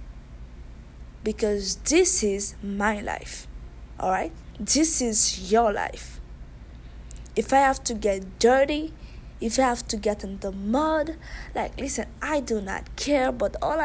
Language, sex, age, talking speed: English, female, 20-39, 145 wpm